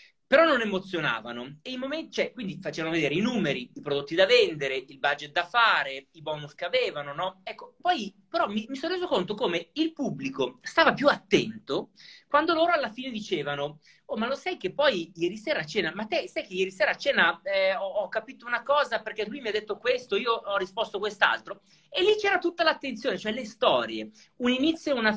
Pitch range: 170-265 Hz